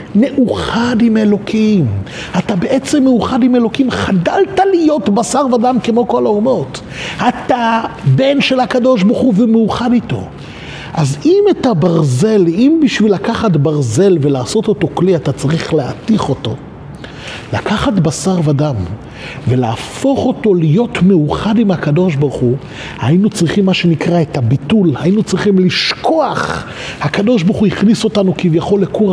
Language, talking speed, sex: Hebrew, 135 wpm, male